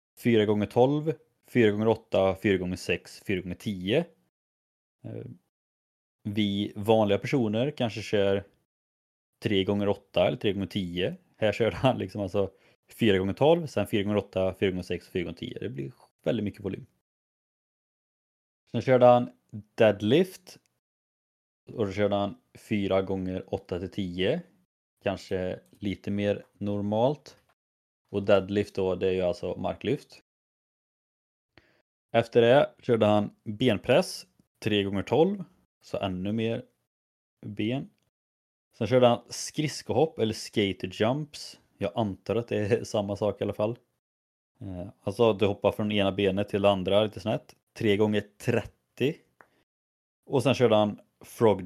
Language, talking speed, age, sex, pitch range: Swedish, 135 wpm, 20-39, male, 95-110 Hz